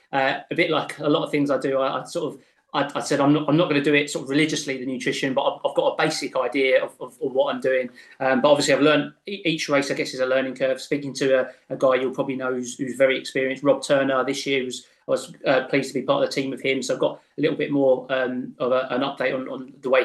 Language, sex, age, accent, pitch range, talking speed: English, male, 30-49, British, 130-150 Hz, 300 wpm